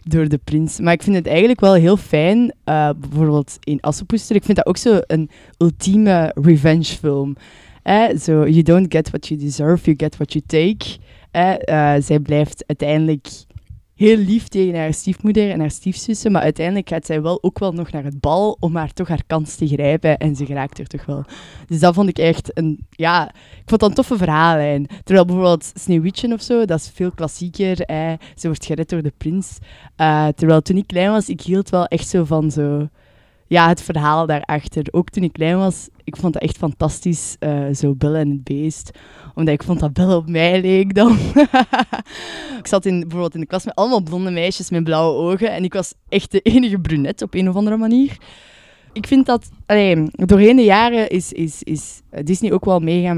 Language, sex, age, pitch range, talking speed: Dutch, female, 20-39, 150-190 Hz, 210 wpm